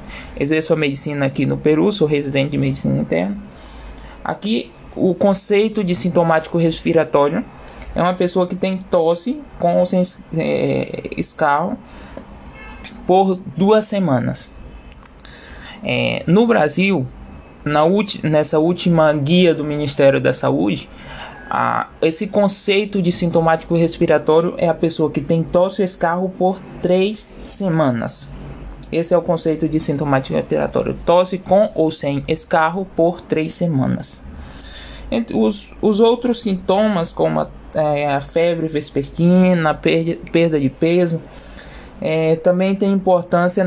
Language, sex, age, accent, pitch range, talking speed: Portuguese, male, 20-39, Brazilian, 150-190 Hz, 120 wpm